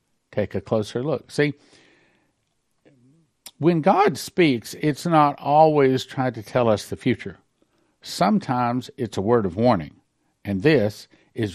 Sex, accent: male, American